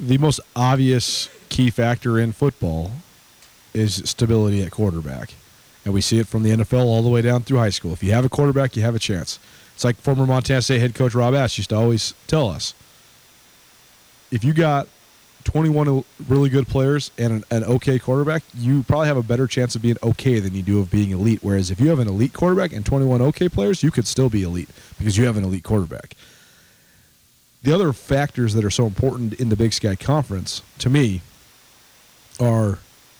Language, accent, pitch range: English, American, 105-135 Hz